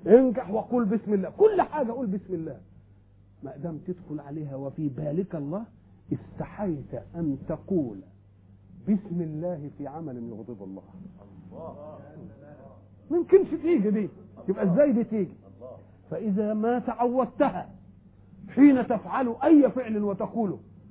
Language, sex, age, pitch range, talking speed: German, male, 50-69, 125-195 Hz, 120 wpm